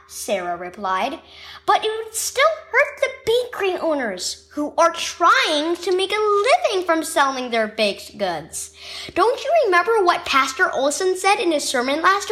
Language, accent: English, American